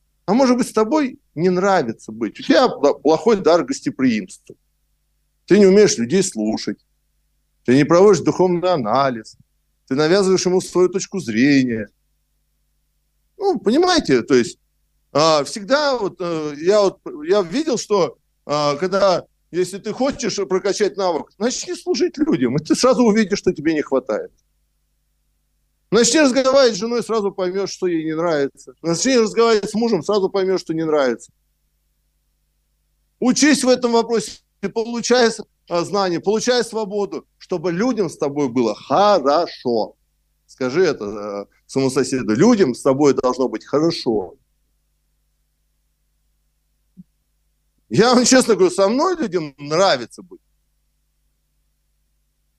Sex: male